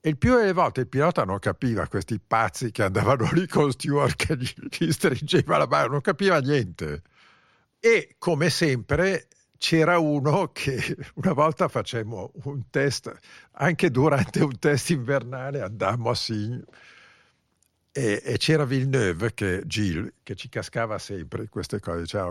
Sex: male